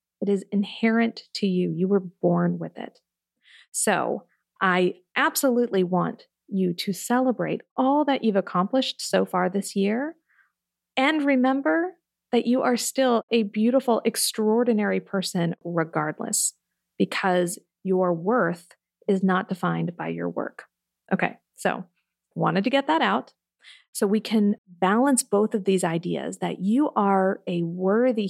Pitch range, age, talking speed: 185-245 Hz, 40-59, 140 wpm